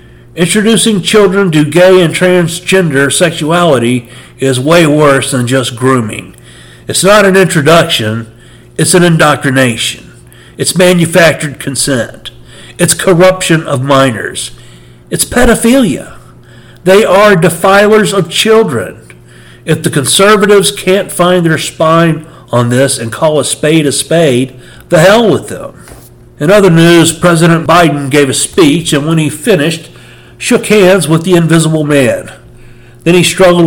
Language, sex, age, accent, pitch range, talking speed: English, male, 50-69, American, 125-170 Hz, 130 wpm